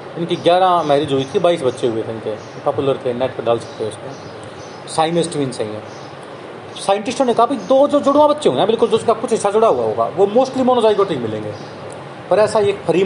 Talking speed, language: 200 wpm, Hindi